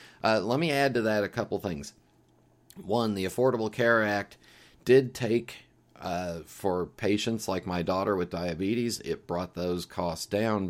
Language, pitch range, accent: English, 85-110 Hz, American